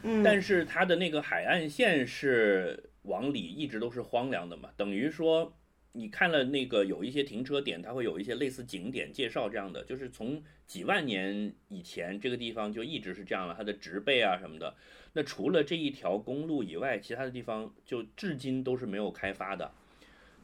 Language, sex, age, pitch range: Chinese, male, 30-49, 120-170 Hz